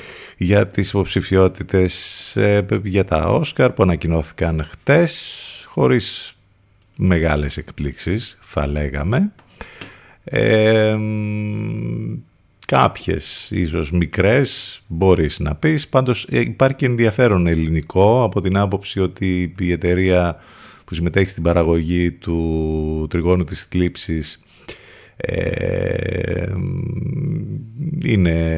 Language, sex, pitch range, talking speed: Greek, male, 85-110 Hz, 85 wpm